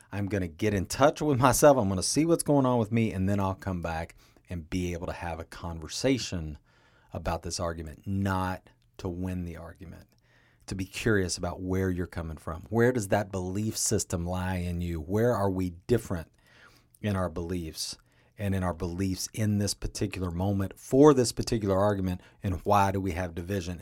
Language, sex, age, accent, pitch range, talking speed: English, male, 40-59, American, 90-115 Hz, 195 wpm